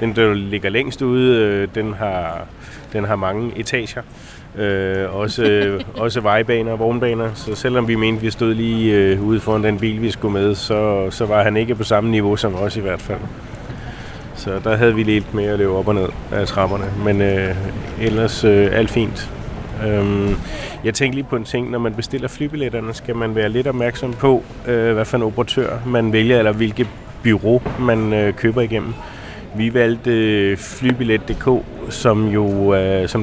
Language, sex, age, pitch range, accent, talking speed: Danish, male, 30-49, 105-120 Hz, native, 180 wpm